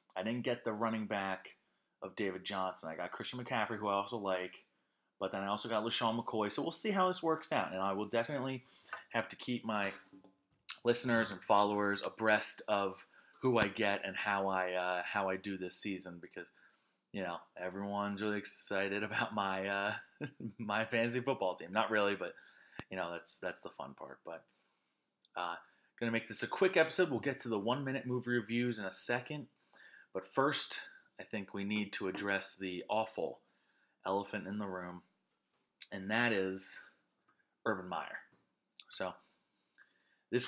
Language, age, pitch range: English, 30-49, 95-115 Hz